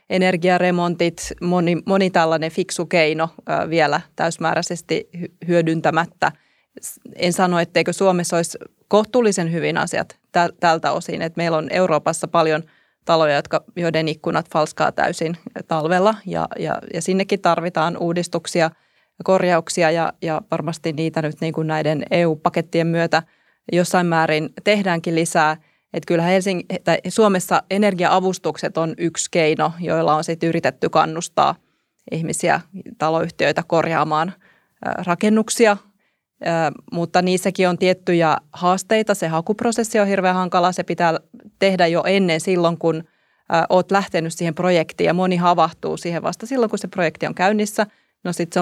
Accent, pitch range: native, 165-185 Hz